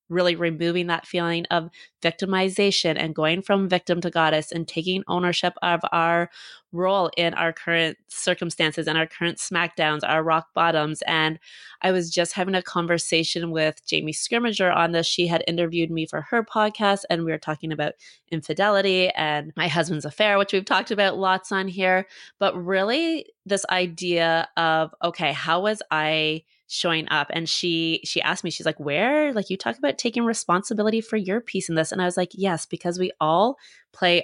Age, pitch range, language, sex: 20-39, 165-195 Hz, English, female